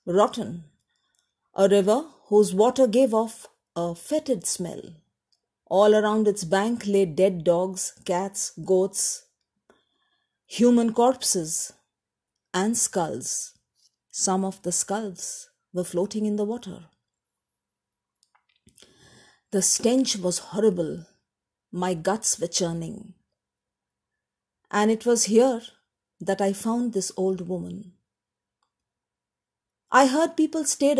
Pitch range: 185-235 Hz